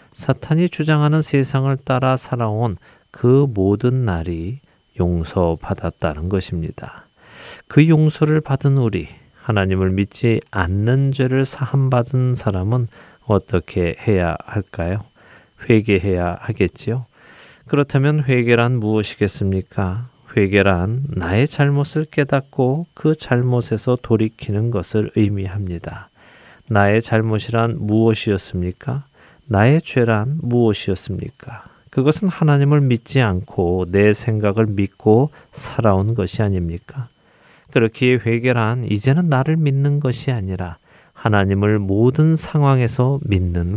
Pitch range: 100-135 Hz